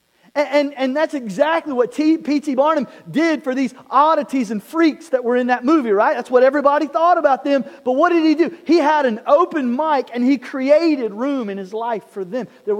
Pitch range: 235-305 Hz